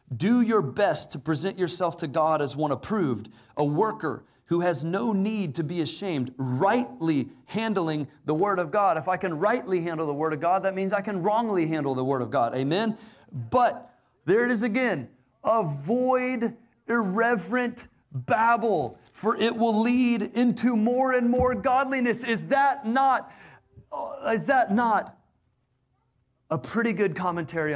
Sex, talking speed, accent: male, 155 wpm, American